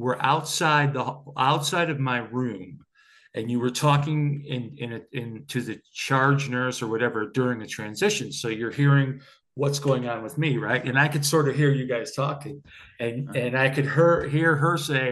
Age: 50-69